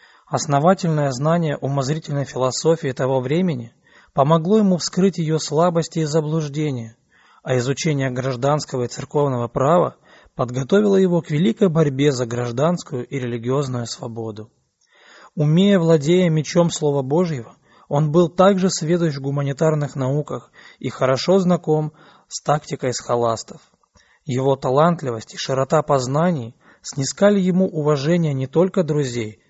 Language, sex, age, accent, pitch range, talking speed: Russian, male, 20-39, native, 130-165 Hz, 120 wpm